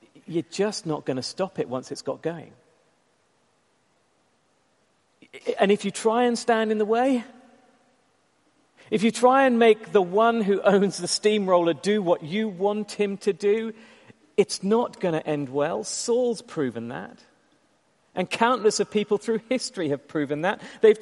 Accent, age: British, 40-59